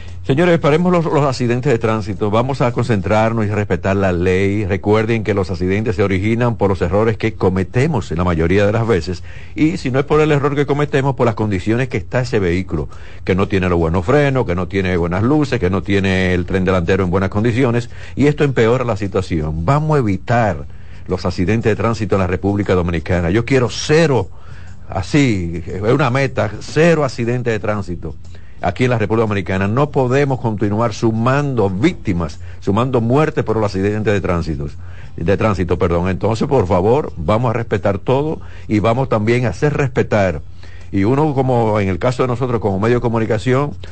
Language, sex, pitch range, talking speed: Spanish, male, 95-120 Hz, 190 wpm